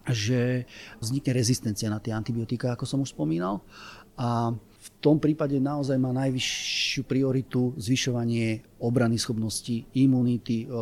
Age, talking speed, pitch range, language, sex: 30-49, 120 wpm, 115-135 Hz, Slovak, male